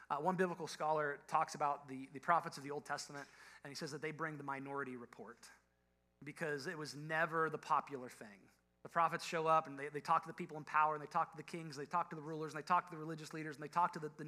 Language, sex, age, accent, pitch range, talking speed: English, male, 30-49, American, 125-165 Hz, 280 wpm